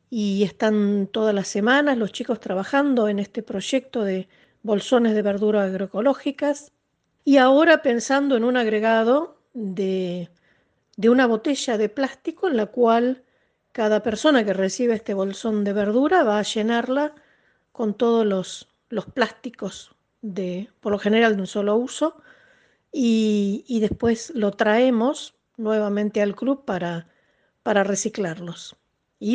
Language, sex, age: Spanish, female, 50-69